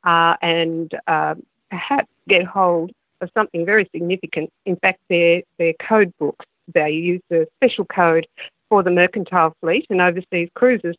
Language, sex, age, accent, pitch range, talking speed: English, female, 50-69, Australian, 165-195 Hz, 155 wpm